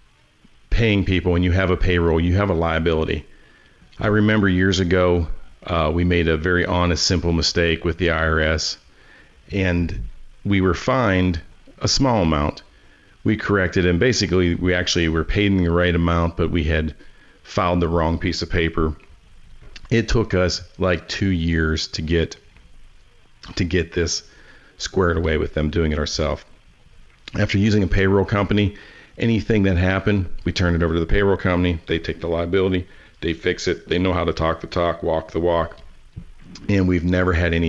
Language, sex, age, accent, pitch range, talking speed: English, male, 40-59, American, 85-100 Hz, 175 wpm